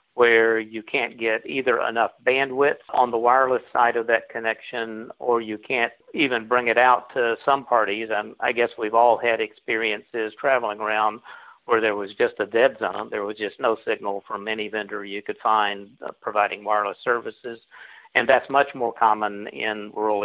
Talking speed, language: 180 wpm, English